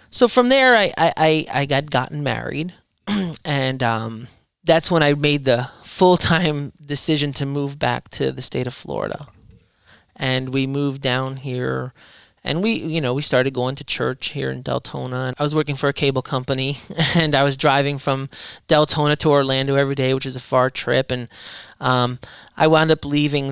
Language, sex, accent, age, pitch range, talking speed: English, male, American, 30-49, 130-155 Hz, 190 wpm